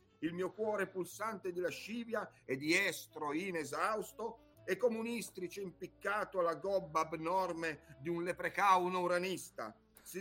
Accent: native